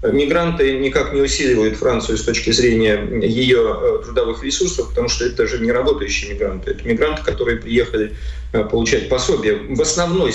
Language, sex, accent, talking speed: Russian, male, native, 150 wpm